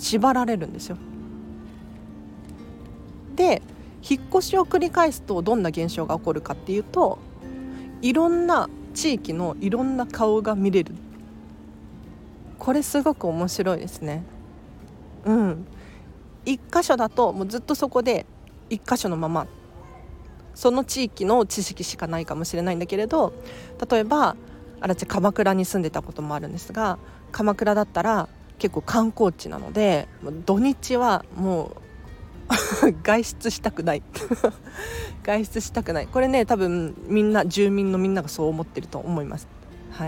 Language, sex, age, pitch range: Japanese, female, 40-59, 165-240 Hz